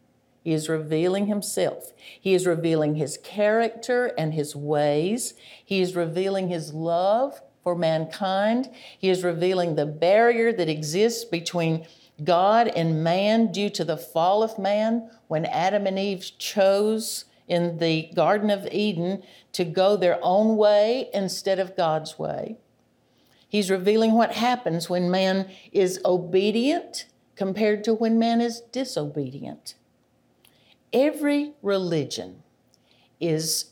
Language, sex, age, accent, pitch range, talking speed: English, female, 50-69, American, 165-225 Hz, 130 wpm